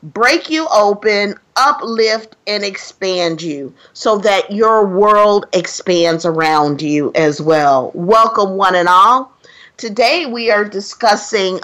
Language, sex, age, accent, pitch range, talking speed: English, female, 50-69, American, 165-235 Hz, 125 wpm